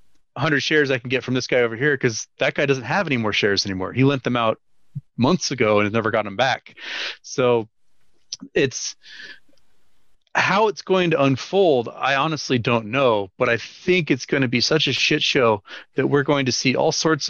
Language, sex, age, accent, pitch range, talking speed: English, male, 30-49, American, 115-150 Hz, 210 wpm